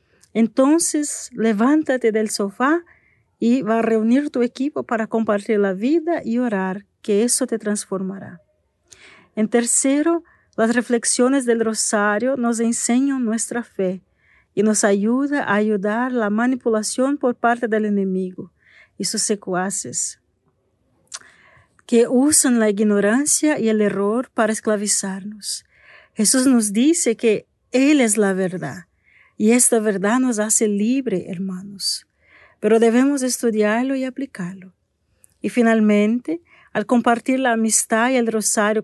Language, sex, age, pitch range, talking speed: Spanish, female, 40-59, 205-250 Hz, 125 wpm